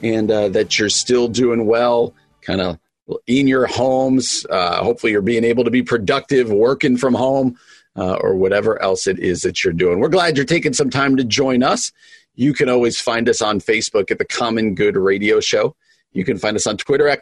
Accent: American